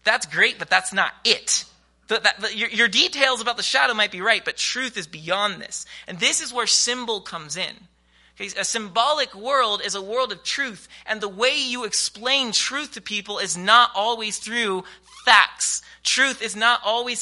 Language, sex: English, male